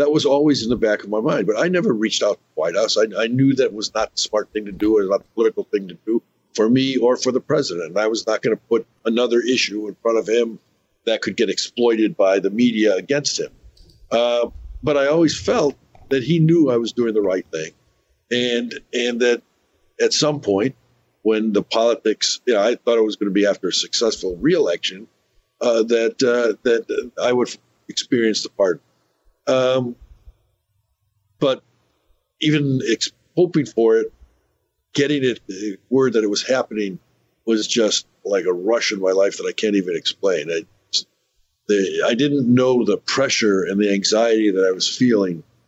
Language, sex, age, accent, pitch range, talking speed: English, male, 60-79, American, 105-135 Hz, 200 wpm